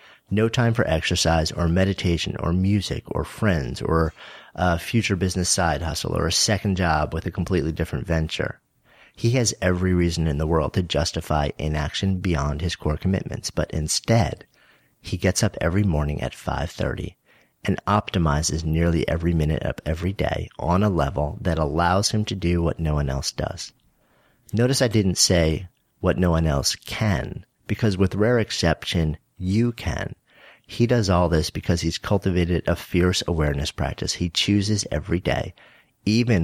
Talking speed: 165 wpm